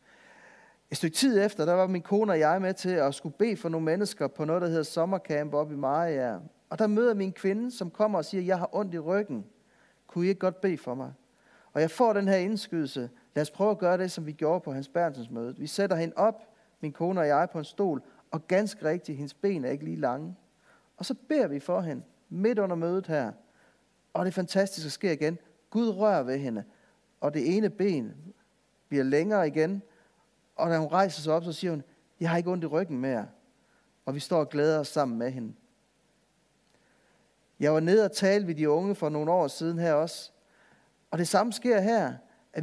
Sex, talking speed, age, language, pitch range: male, 220 wpm, 40-59, Danish, 155-205 Hz